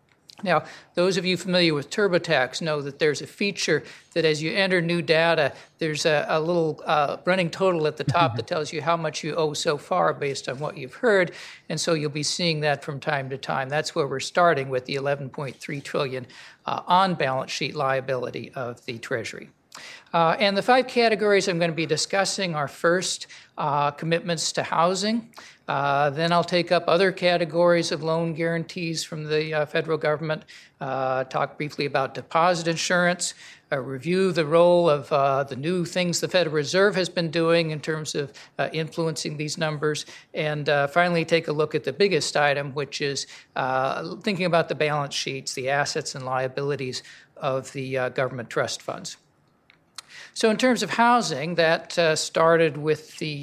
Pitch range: 145-175 Hz